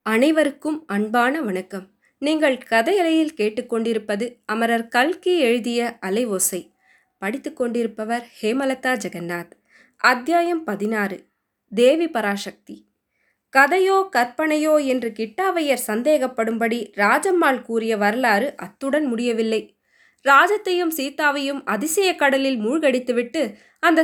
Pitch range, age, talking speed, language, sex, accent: 220-305 Hz, 20-39, 80 wpm, Tamil, female, native